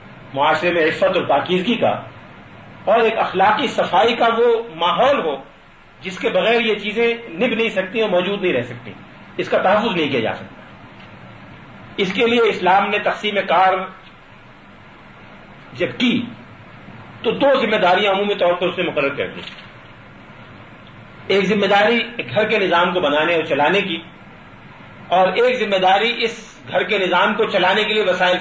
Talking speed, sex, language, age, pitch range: 165 wpm, male, Urdu, 50-69, 180-230 Hz